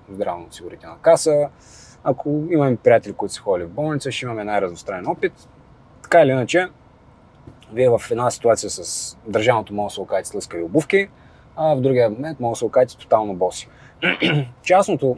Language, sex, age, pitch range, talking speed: Bulgarian, male, 20-39, 120-155 Hz, 160 wpm